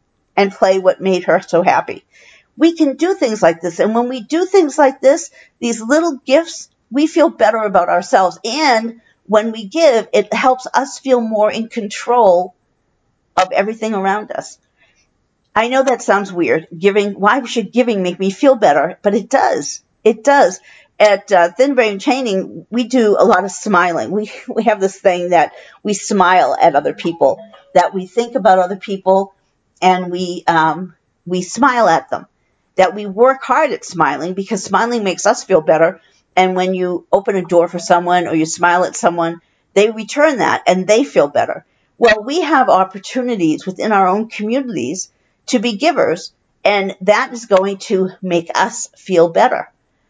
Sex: female